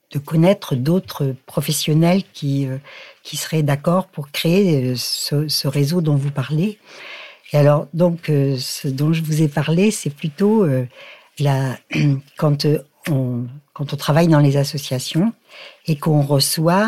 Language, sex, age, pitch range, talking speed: French, female, 60-79, 140-170 Hz, 155 wpm